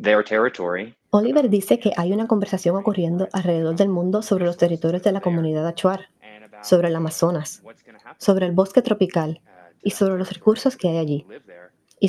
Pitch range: 170-230 Hz